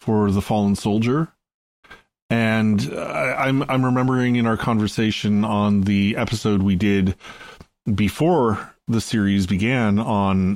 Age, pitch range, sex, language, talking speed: 30-49, 95-110 Hz, male, English, 125 wpm